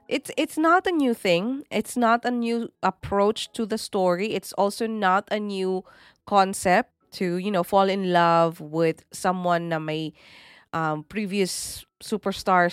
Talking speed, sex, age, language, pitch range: 155 wpm, female, 20-39, English, 165-215 Hz